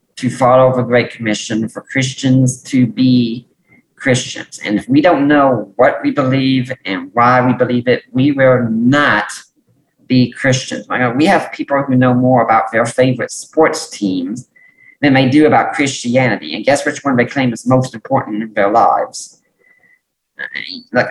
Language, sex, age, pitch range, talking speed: English, male, 40-59, 120-140 Hz, 160 wpm